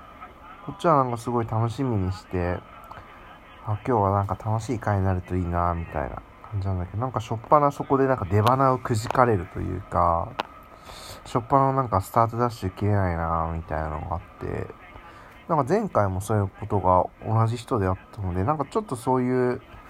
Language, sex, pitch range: Japanese, male, 95-125 Hz